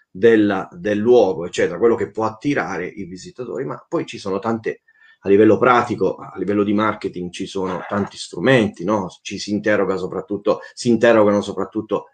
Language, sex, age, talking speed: Italian, male, 30-49, 170 wpm